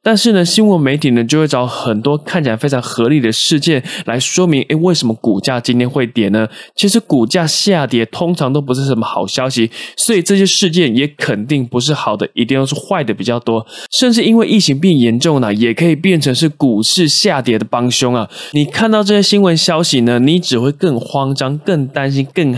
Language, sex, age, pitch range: Chinese, male, 20-39, 120-175 Hz